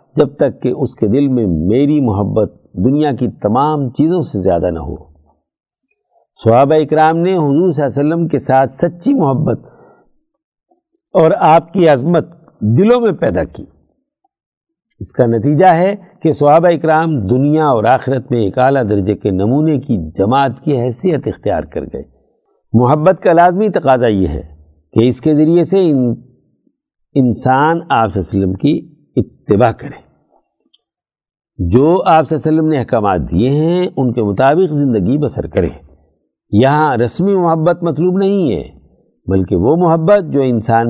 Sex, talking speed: male, 140 wpm